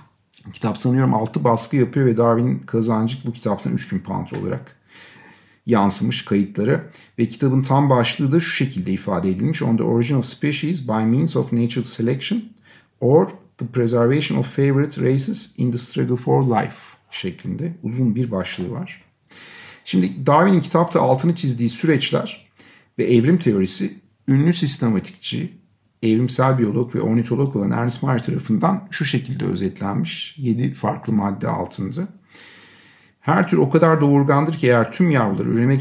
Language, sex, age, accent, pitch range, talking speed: Turkish, male, 50-69, native, 115-145 Hz, 145 wpm